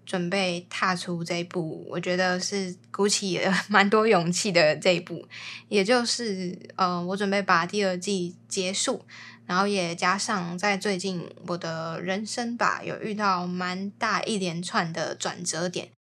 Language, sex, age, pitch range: Chinese, female, 10-29, 175-205 Hz